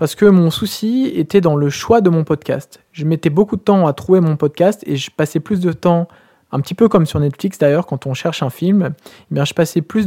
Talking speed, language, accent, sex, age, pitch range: 245 wpm, French, French, male, 20-39, 145-185 Hz